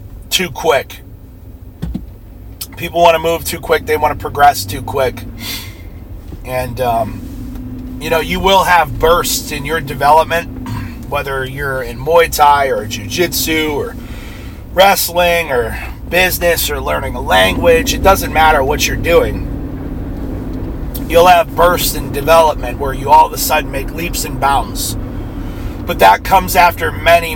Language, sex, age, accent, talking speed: English, male, 30-49, American, 145 wpm